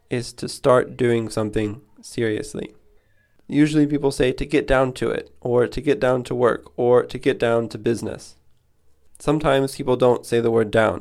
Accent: American